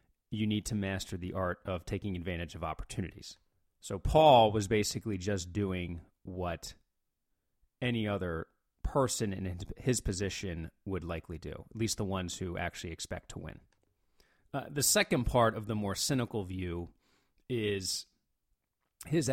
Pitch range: 90-110 Hz